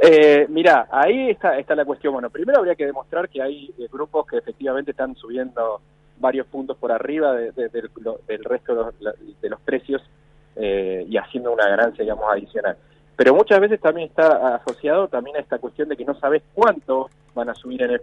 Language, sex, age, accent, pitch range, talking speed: Spanish, male, 20-39, Argentinian, 130-175 Hz, 205 wpm